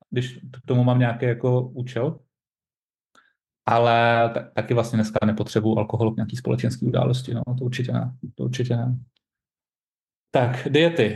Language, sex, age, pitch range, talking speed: Czech, male, 30-49, 110-125 Hz, 140 wpm